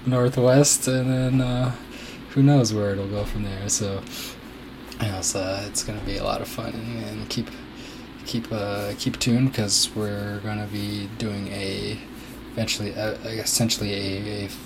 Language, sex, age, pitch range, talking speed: English, male, 20-39, 100-115 Hz, 165 wpm